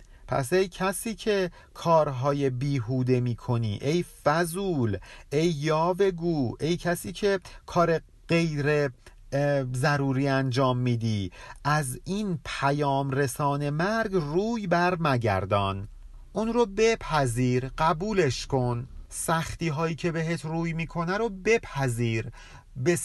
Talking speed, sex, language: 105 wpm, male, Persian